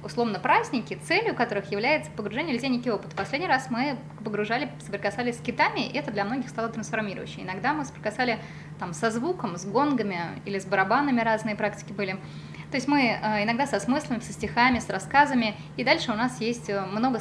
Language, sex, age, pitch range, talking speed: Russian, female, 20-39, 195-245 Hz, 180 wpm